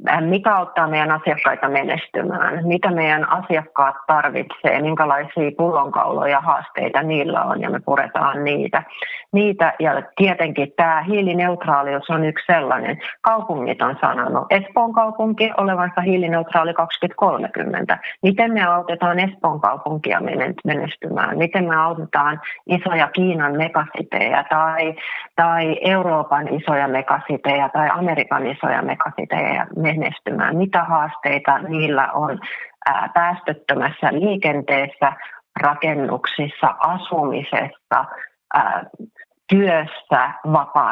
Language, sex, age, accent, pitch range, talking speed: Finnish, female, 30-49, native, 145-180 Hz, 95 wpm